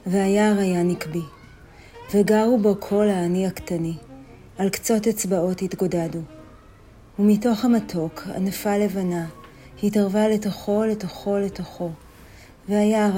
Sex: female